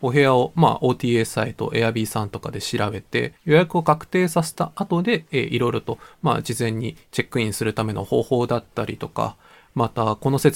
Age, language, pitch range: 20-39, Japanese, 120-160 Hz